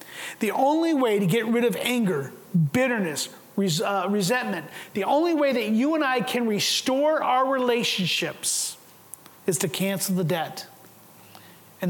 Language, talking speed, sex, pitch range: English, 140 wpm, male, 195-255 Hz